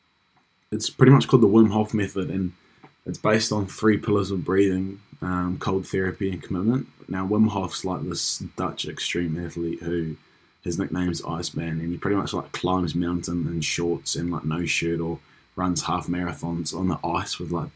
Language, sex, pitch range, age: English, male, 85-95 Hz, 20-39